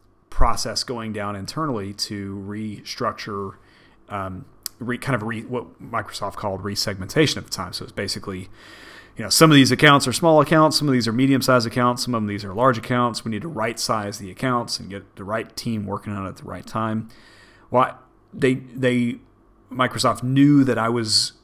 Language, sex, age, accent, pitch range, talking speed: English, male, 30-49, American, 100-125 Hz, 195 wpm